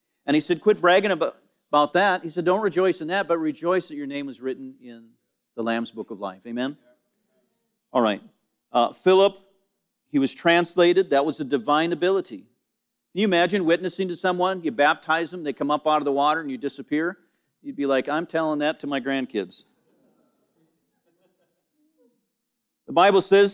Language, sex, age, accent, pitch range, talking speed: English, male, 50-69, American, 165-215 Hz, 180 wpm